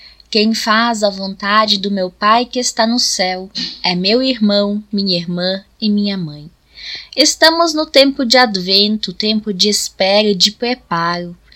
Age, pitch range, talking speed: 10-29, 205-250 Hz, 155 wpm